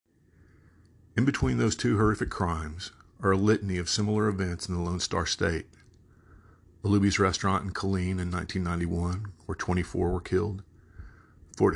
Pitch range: 85-100 Hz